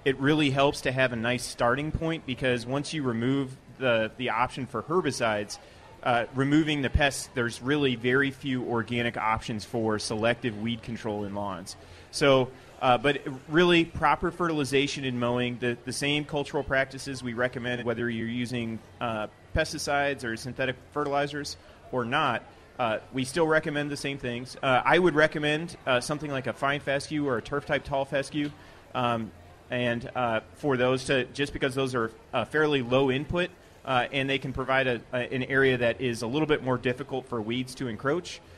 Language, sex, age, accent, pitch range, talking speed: English, male, 30-49, American, 120-140 Hz, 180 wpm